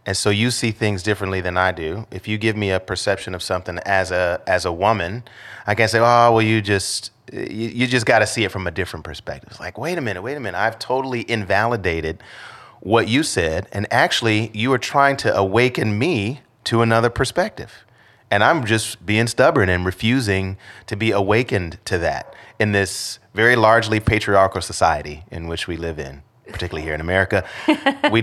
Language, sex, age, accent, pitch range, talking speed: English, male, 30-49, American, 95-115 Hz, 200 wpm